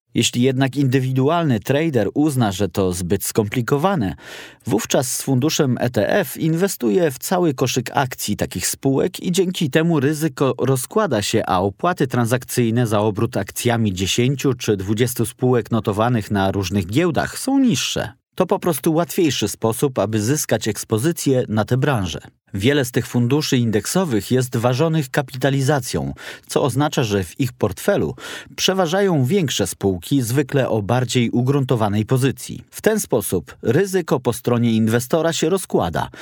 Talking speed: 140 wpm